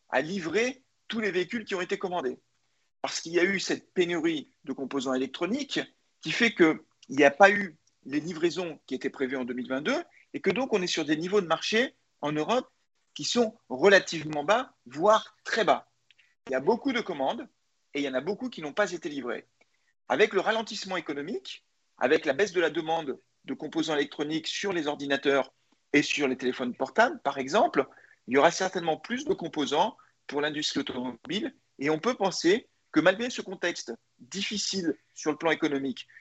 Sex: male